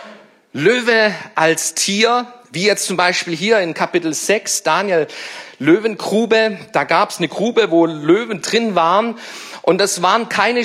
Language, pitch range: German, 155-215 Hz